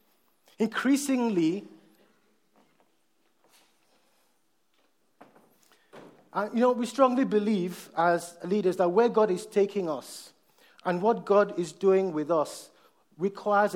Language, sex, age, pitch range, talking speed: English, male, 50-69, 175-235 Hz, 100 wpm